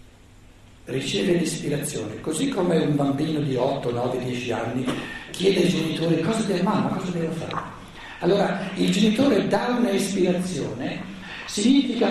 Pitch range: 130-220 Hz